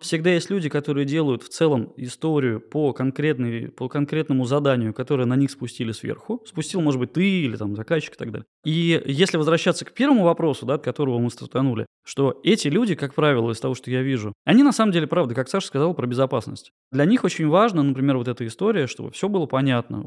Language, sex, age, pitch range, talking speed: Russian, male, 20-39, 125-165 Hz, 210 wpm